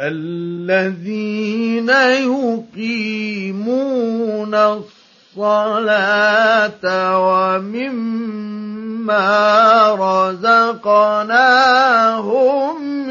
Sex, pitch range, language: male, 215-280 Hz, Arabic